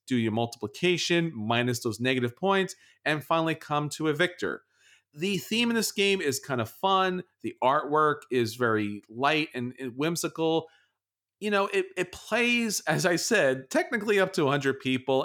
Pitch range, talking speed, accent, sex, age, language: 135-180 Hz, 165 wpm, American, male, 40-59, English